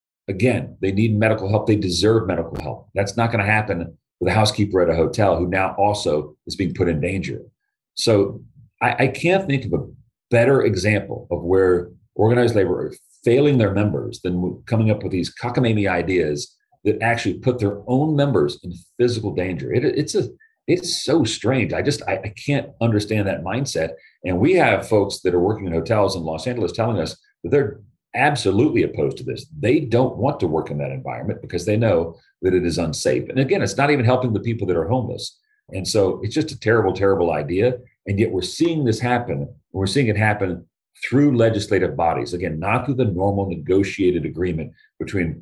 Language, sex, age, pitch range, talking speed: English, male, 40-59, 90-115 Hz, 200 wpm